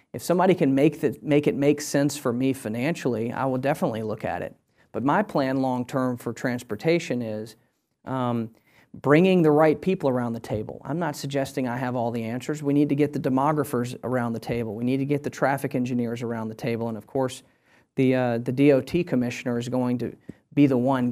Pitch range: 125-145 Hz